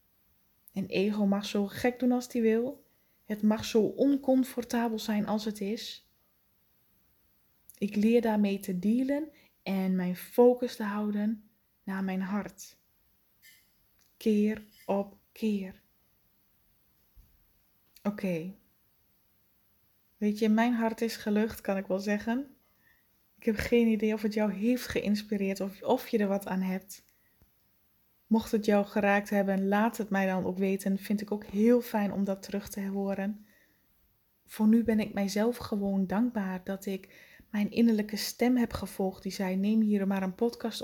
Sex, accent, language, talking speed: female, Dutch, Dutch, 150 wpm